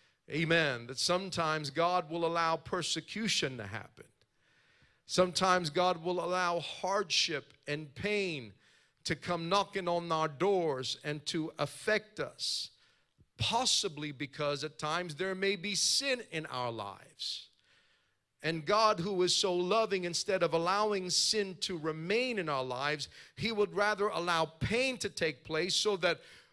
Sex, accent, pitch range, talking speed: male, American, 160-205 Hz, 140 wpm